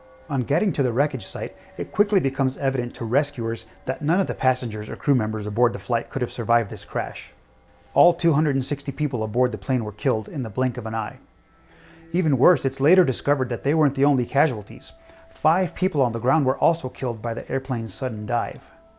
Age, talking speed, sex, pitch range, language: 30-49, 210 wpm, male, 125-155 Hz, English